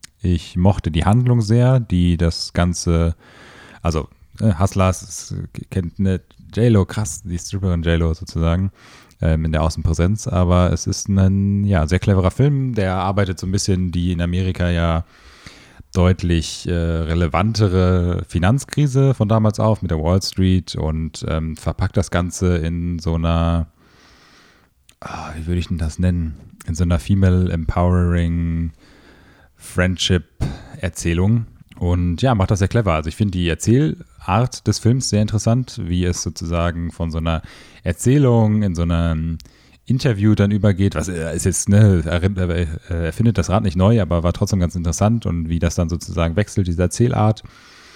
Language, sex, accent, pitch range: German, male, German, 85-100 Hz